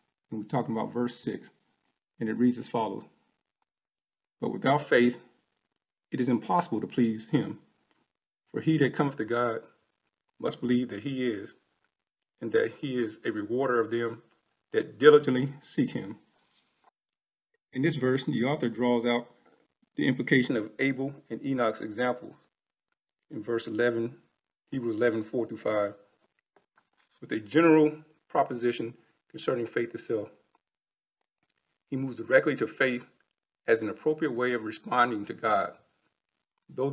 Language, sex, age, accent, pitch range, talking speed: English, male, 40-59, American, 115-135 Hz, 135 wpm